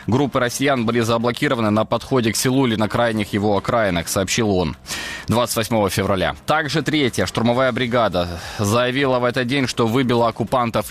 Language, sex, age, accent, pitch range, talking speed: Ukrainian, male, 20-39, native, 100-125 Hz, 155 wpm